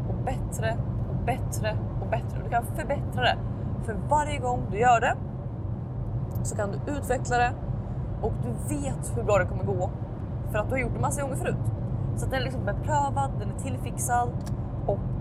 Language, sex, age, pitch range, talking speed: Swedish, female, 20-39, 110-130 Hz, 195 wpm